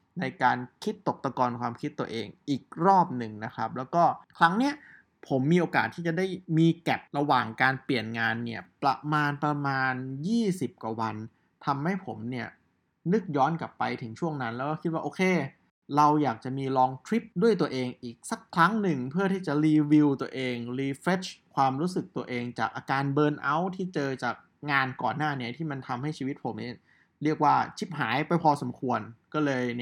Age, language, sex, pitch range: 20-39, Thai, male, 125-165 Hz